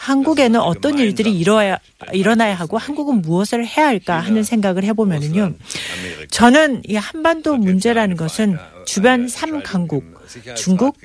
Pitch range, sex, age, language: 185-250 Hz, female, 40-59, Korean